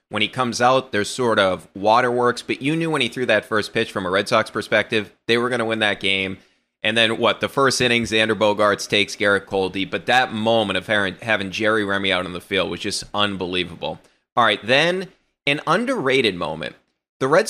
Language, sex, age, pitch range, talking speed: English, male, 30-49, 100-125 Hz, 215 wpm